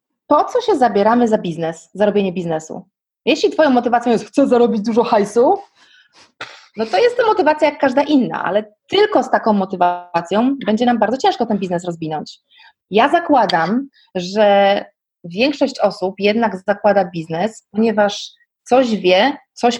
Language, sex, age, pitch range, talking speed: Polish, female, 30-49, 200-260 Hz, 145 wpm